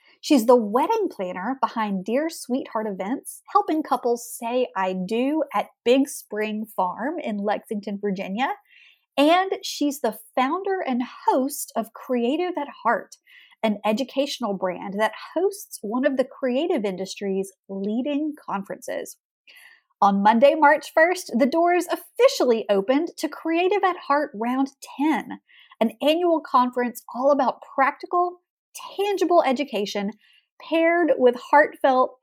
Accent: American